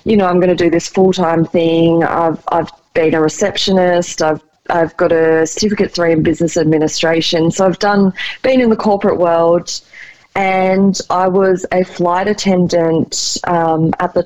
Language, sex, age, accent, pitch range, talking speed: English, female, 20-39, Australian, 165-195 Hz, 170 wpm